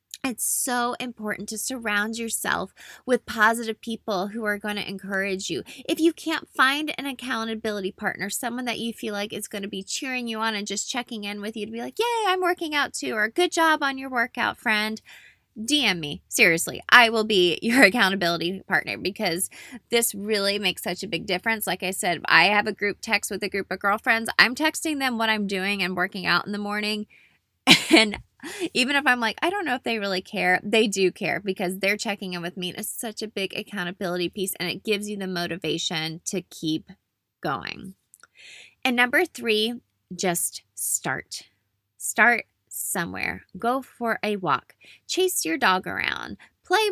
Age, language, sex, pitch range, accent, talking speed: 20-39, English, female, 195-250 Hz, American, 190 wpm